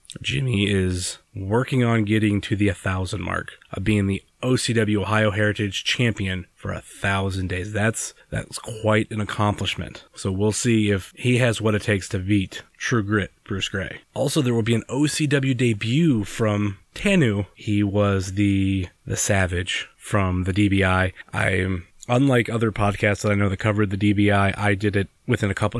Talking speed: 170 wpm